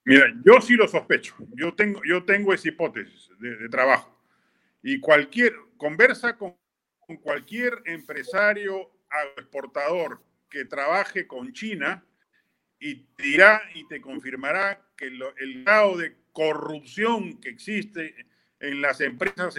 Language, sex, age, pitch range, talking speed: Spanish, male, 50-69, 160-205 Hz, 130 wpm